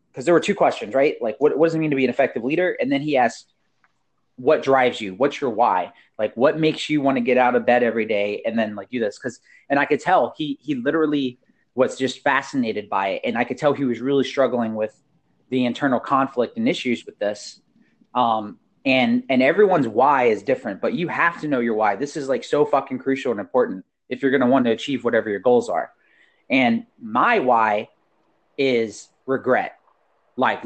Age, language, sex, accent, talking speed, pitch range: 30-49, English, male, American, 220 wpm, 120-150 Hz